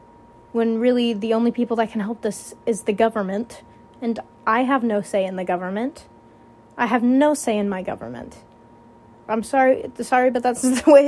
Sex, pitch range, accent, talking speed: female, 205-255 Hz, American, 185 wpm